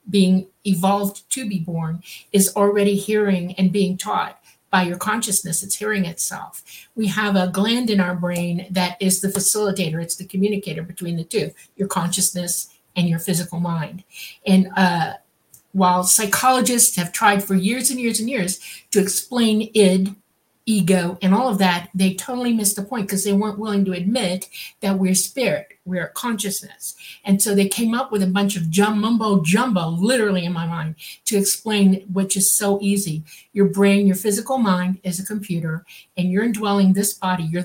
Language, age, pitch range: English, 60-79, 180-205 Hz